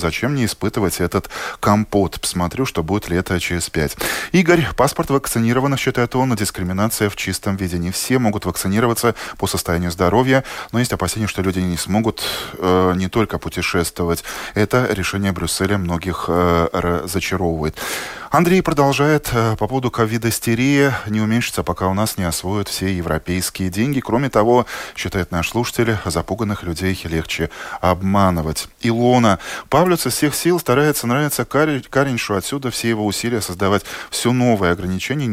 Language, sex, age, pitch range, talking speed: Russian, male, 20-39, 85-120 Hz, 145 wpm